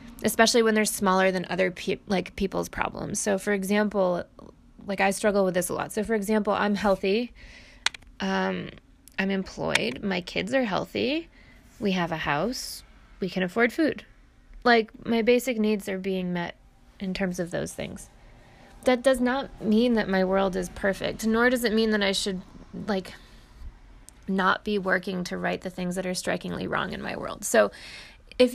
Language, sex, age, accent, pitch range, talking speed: English, female, 20-39, American, 190-230 Hz, 180 wpm